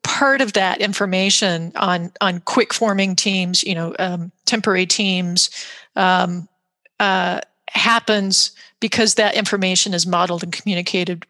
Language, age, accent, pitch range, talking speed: English, 40-59, American, 180-215 Hz, 120 wpm